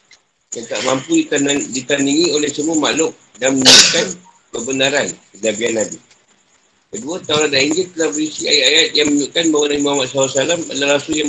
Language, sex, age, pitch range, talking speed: Malay, male, 50-69, 120-150 Hz, 145 wpm